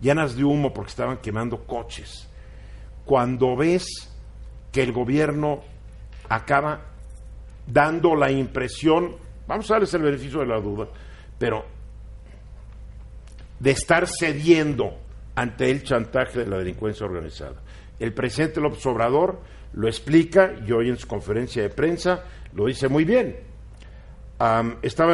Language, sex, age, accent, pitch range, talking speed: Spanish, male, 50-69, Mexican, 110-145 Hz, 125 wpm